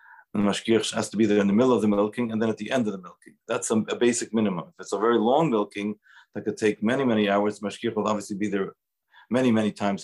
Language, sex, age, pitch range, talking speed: English, male, 40-59, 100-115 Hz, 270 wpm